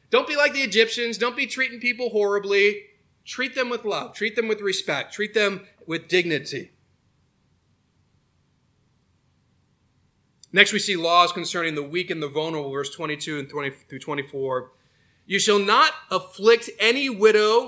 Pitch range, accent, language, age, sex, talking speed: 165-230 Hz, American, English, 30-49, male, 145 wpm